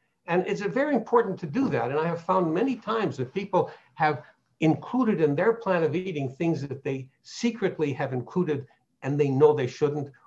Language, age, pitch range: English, 60-79, 135-180 Hz